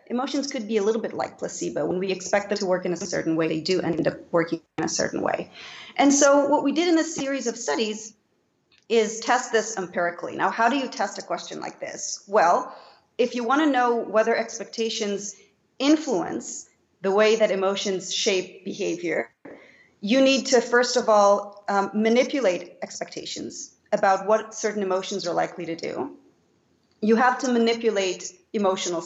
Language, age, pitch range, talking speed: English, 40-59, 190-255 Hz, 180 wpm